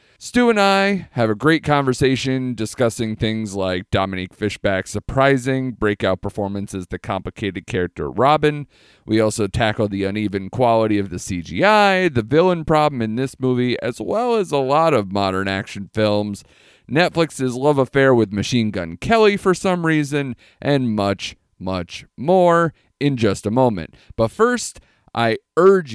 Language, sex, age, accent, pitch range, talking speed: English, male, 30-49, American, 105-140 Hz, 155 wpm